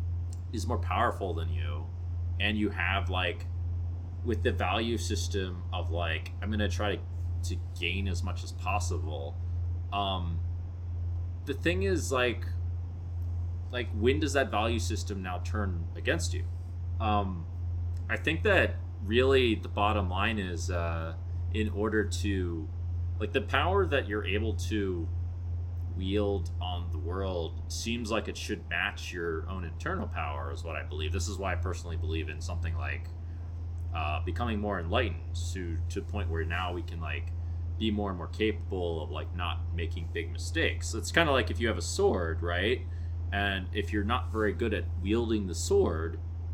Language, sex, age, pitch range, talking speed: English, male, 20-39, 85-90 Hz, 170 wpm